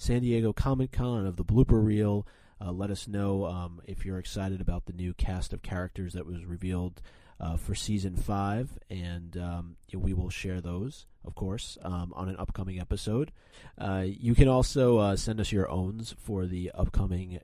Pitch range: 85-105 Hz